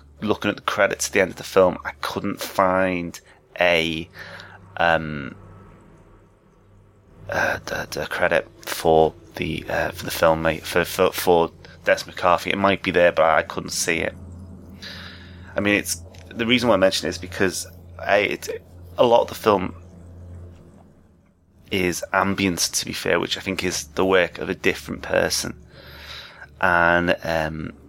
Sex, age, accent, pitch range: male, 30-49, British, 85-90 Hz